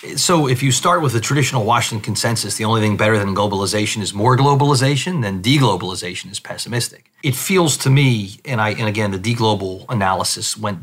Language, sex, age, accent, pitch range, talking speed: English, male, 30-49, American, 105-125 Hz, 190 wpm